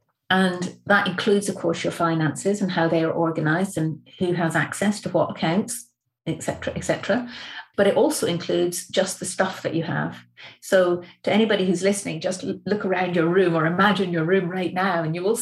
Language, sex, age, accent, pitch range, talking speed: English, female, 40-59, British, 155-195 Hz, 200 wpm